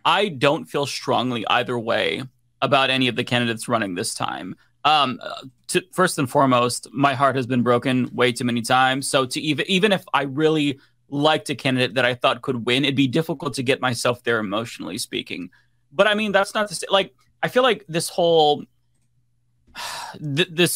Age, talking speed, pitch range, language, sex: 30-49, 190 wpm, 125-155 Hz, English, male